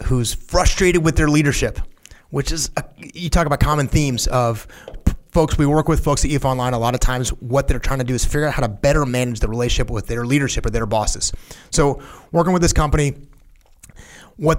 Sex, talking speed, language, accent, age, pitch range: male, 210 wpm, English, American, 30-49, 120-150 Hz